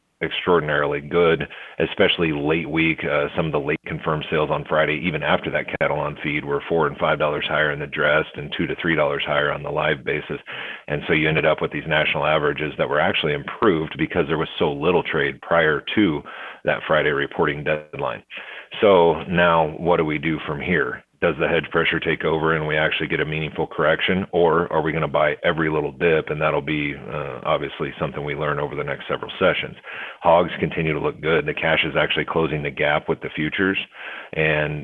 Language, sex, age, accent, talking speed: English, male, 40-59, American, 210 wpm